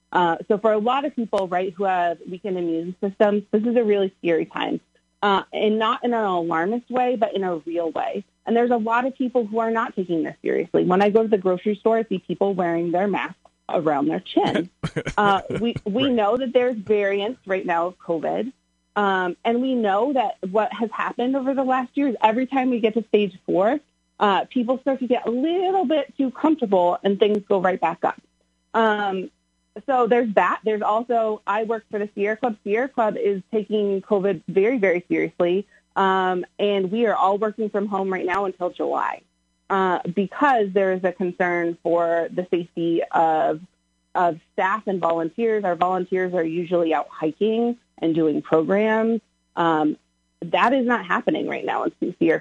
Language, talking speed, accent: English, 195 wpm, American